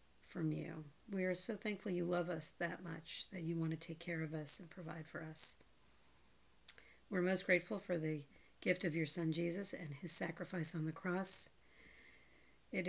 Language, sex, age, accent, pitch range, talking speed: English, female, 40-59, American, 160-185 Hz, 185 wpm